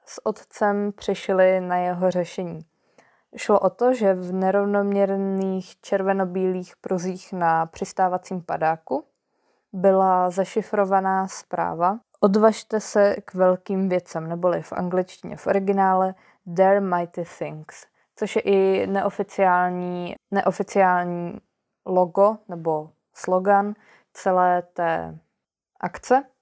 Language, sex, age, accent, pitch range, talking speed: Czech, female, 20-39, native, 175-195 Hz, 100 wpm